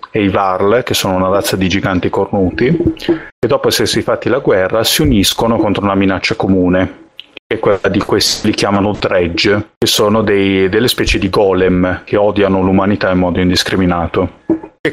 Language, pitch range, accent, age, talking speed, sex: Italian, 95-115 Hz, native, 30-49, 175 wpm, male